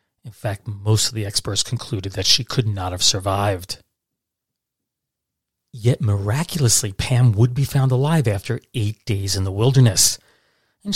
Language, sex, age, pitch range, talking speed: English, male, 40-59, 100-130 Hz, 150 wpm